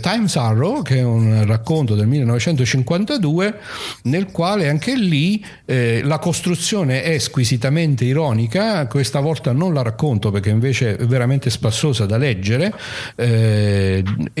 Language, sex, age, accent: Italian, male, 50-69, native